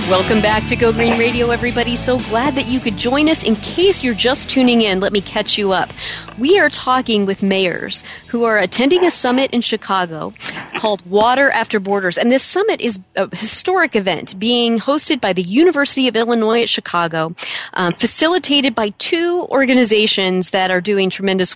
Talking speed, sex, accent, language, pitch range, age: 185 wpm, female, American, English, 195-265 Hz, 40-59